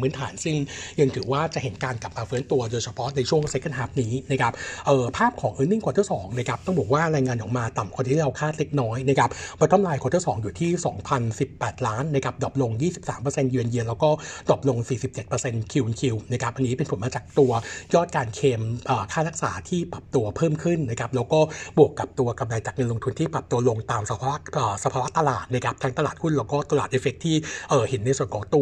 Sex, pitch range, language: male, 125-150 Hz, Thai